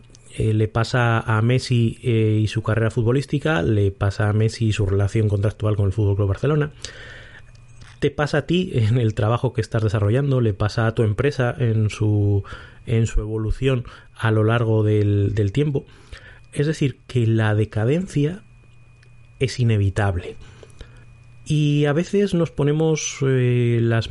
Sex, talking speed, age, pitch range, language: male, 150 wpm, 30-49, 110-130 Hz, Spanish